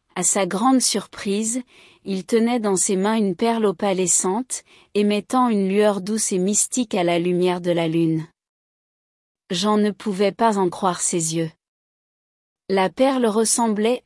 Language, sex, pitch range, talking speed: French, female, 185-230 Hz, 150 wpm